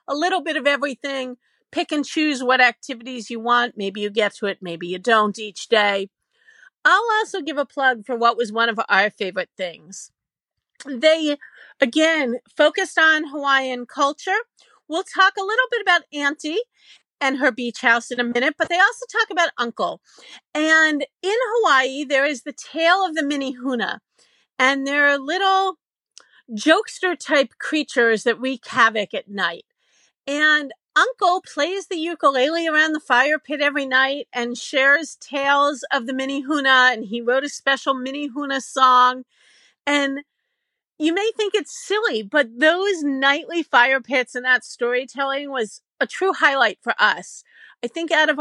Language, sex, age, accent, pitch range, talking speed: English, female, 40-59, American, 245-320 Hz, 165 wpm